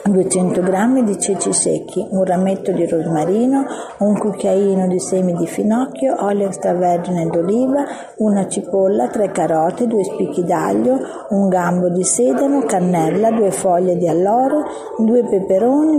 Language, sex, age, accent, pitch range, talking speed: English, female, 50-69, Italian, 185-240 Hz, 135 wpm